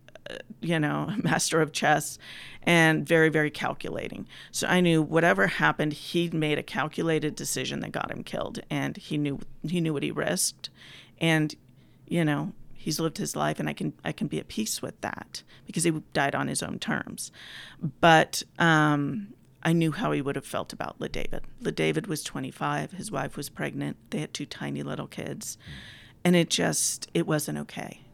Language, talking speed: English, 185 wpm